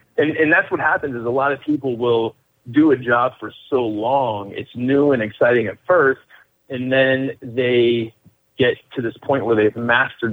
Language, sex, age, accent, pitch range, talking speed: English, male, 30-49, American, 115-155 Hz, 190 wpm